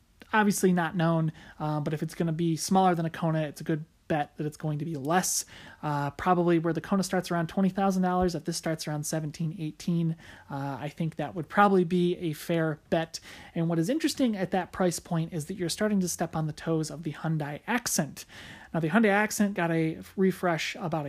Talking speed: 220 wpm